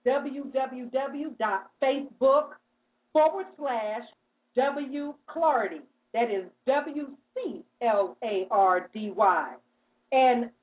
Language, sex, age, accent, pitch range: English, female, 50-69, American, 255-350 Hz